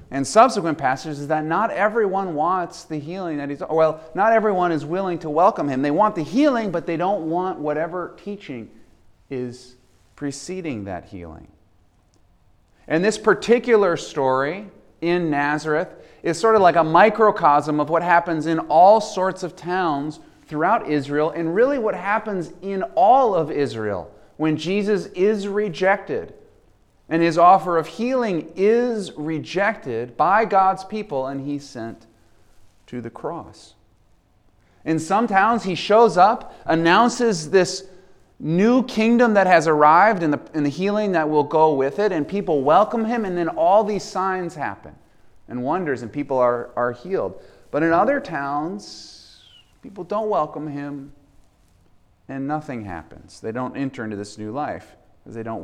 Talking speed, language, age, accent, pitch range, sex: 155 wpm, English, 30-49, American, 125-195 Hz, male